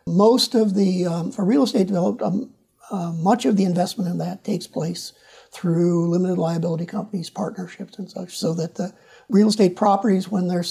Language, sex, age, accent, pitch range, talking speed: English, male, 50-69, American, 170-205 Hz, 185 wpm